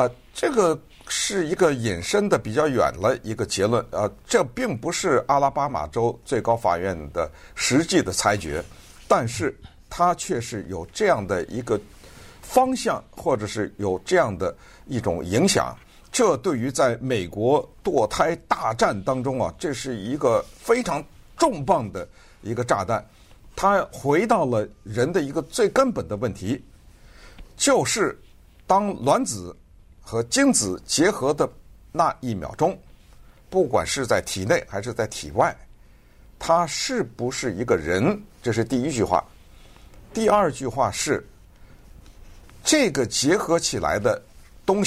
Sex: male